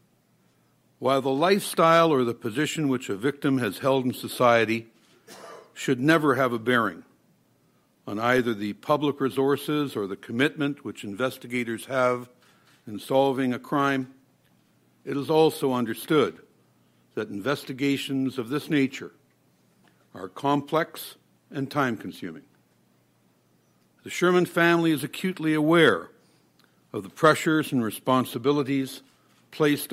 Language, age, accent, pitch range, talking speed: English, 60-79, American, 120-145 Hz, 115 wpm